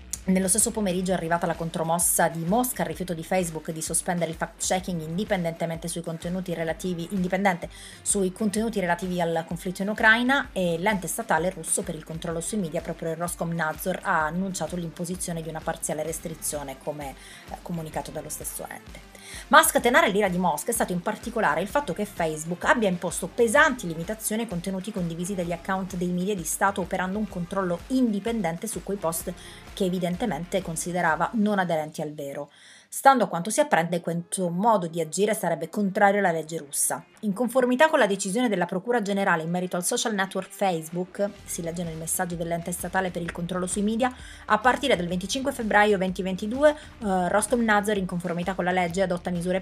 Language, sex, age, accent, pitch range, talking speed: Italian, female, 30-49, native, 165-205 Hz, 180 wpm